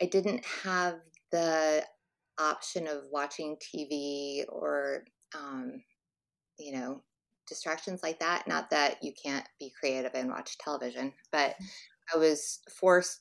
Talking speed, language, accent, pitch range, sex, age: 125 wpm, English, American, 145-170 Hz, female, 20-39